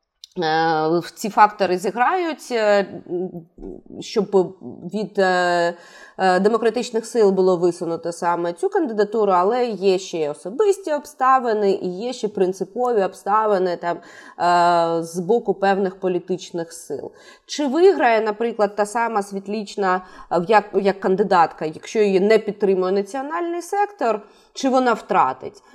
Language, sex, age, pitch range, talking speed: Ukrainian, female, 20-39, 185-245 Hz, 105 wpm